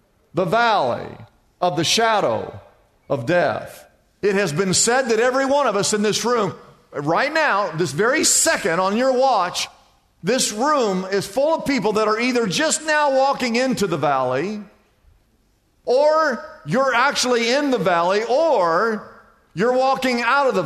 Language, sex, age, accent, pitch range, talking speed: English, male, 50-69, American, 175-245 Hz, 155 wpm